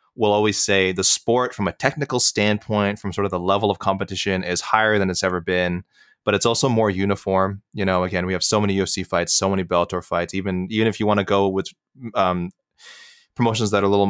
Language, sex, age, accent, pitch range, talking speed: English, male, 20-39, American, 90-105 Hz, 230 wpm